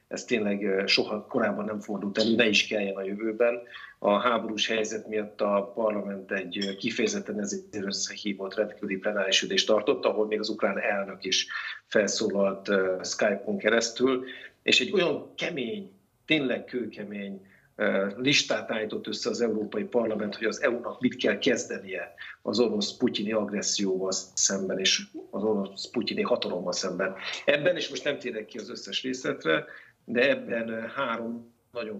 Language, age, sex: Hungarian, 50-69, male